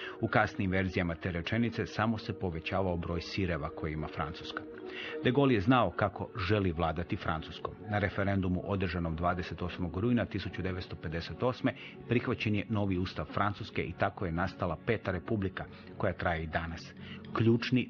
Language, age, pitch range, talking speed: Croatian, 40-59, 85-110 Hz, 145 wpm